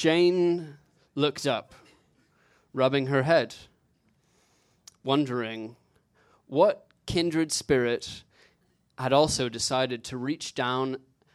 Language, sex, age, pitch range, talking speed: English, male, 20-39, 130-150 Hz, 85 wpm